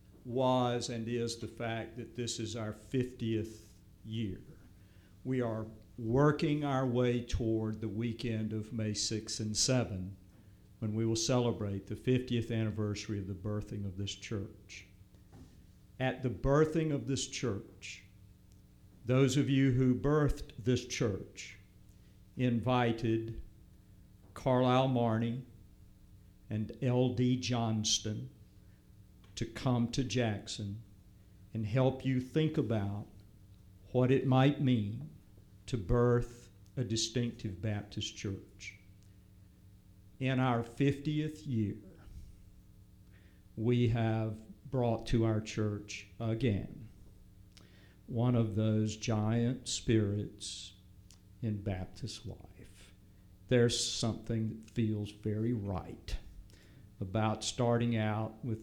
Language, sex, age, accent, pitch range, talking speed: English, male, 60-79, American, 95-120 Hz, 105 wpm